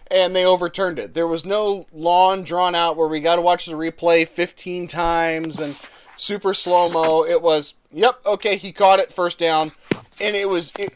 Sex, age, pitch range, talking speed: male, 20-39, 160-195 Hz, 190 wpm